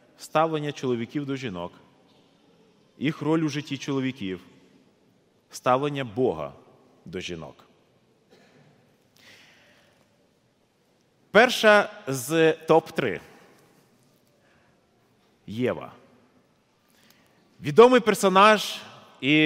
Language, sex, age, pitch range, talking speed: Ukrainian, male, 30-49, 145-200 Hz, 60 wpm